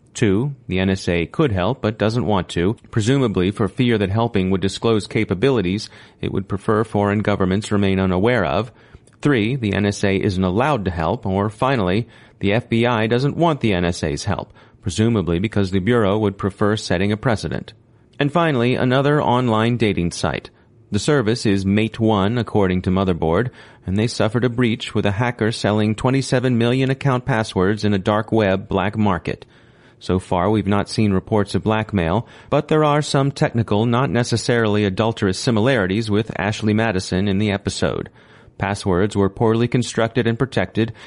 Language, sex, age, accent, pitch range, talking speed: English, male, 30-49, American, 100-120 Hz, 165 wpm